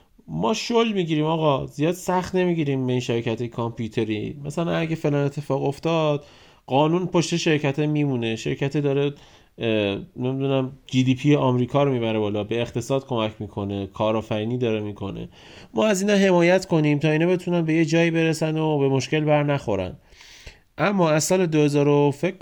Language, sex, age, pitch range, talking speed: Persian, male, 30-49, 110-145 Hz, 155 wpm